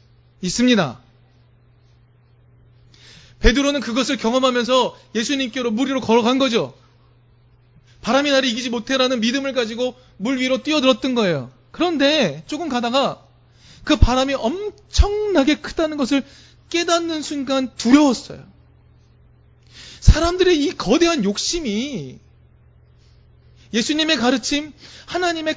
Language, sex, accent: Korean, male, native